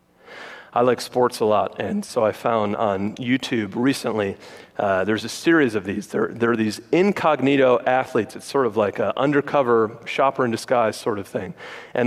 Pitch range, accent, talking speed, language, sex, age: 120-160 Hz, American, 180 wpm, English, male, 40-59